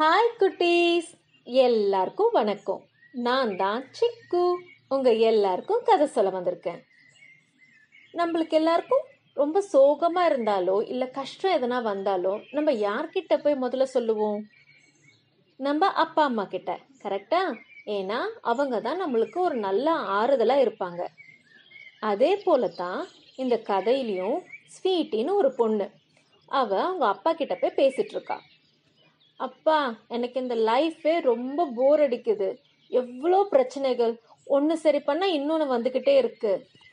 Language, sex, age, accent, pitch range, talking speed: Tamil, female, 30-49, native, 215-345 Hz, 110 wpm